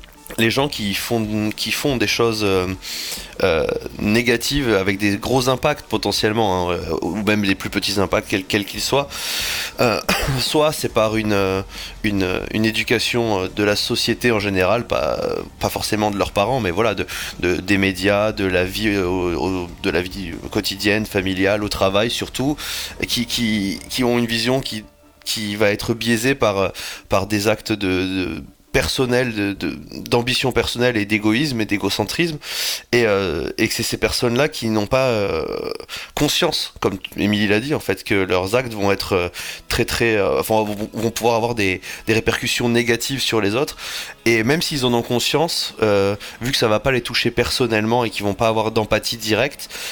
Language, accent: French, French